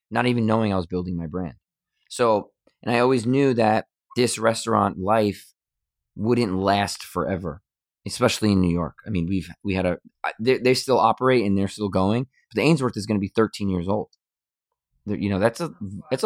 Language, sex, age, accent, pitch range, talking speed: English, male, 20-39, American, 95-120 Hz, 200 wpm